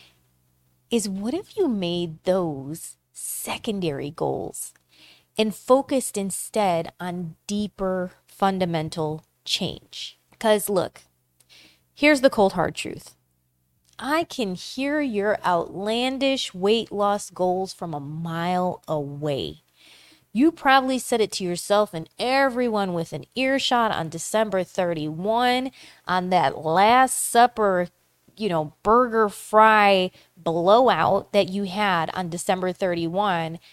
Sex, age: female, 30-49